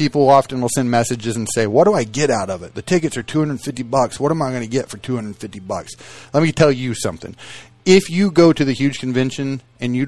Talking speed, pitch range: 250 wpm, 115-145 Hz